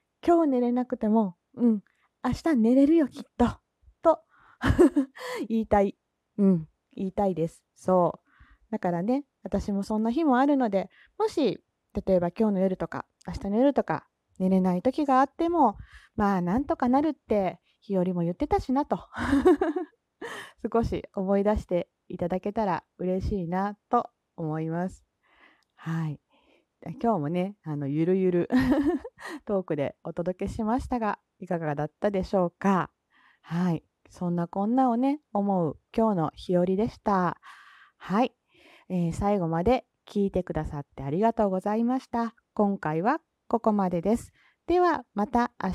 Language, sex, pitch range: Japanese, female, 180-260 Hz